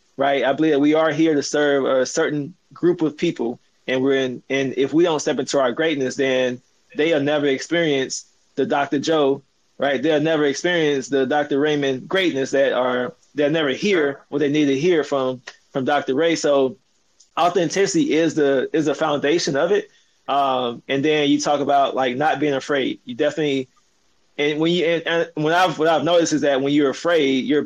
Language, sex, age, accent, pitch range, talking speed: English, male, 20-39, American, 135-165 Hz, 195 wpm